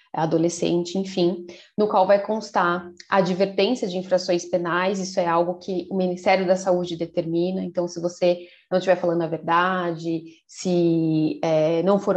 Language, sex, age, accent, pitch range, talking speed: Portuguese, female, 20-39, Brazilian, 170-205 Hz, 160 wpm